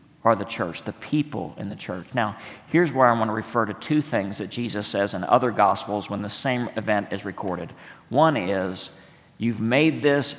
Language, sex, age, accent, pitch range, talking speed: English, male, 50-69, American, 105-130 Hz, 195 wpm